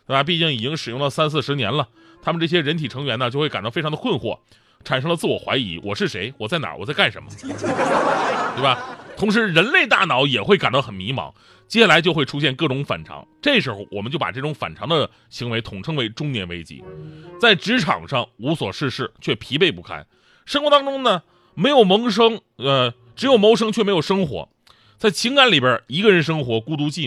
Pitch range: 125-185 Hz